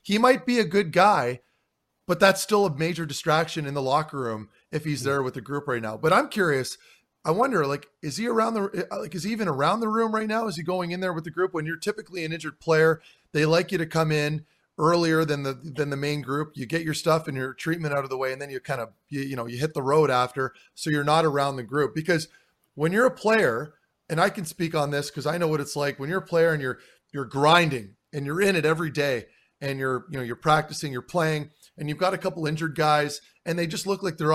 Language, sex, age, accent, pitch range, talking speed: English, male, 30-49, American, 140-175 Hz, 265 wpm